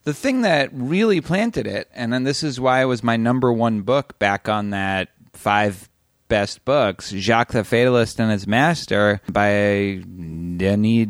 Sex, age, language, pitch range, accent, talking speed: male, 30-49, English, 100-130 Hz, American, 170 wpm